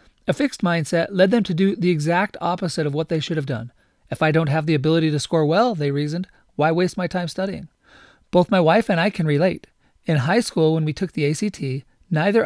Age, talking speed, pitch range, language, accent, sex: 30-49, 230 wpm, 160-195 Hz, English, American, male